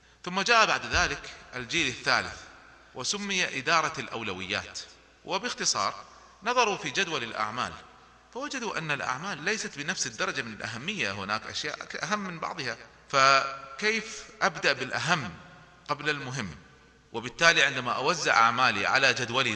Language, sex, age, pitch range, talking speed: Arabic, male, 30-49, 125-180 Hz, 115 wpm